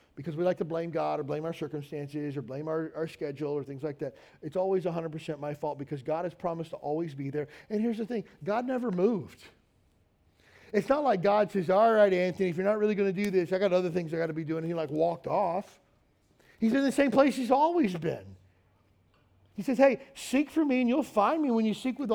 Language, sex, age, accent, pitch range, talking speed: English, male, 40-59, American, 170-245 Hz, 245 wpm